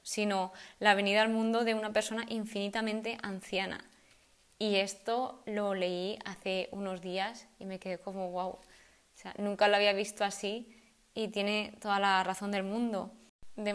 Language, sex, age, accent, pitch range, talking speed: Spanish, female, 20-39, Spanish, 195-220 Hz, 160 wpm